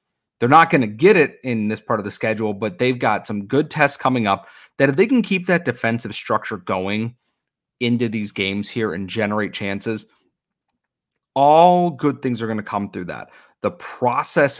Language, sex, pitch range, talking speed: English, male, 105-130 Hz, 195 wpm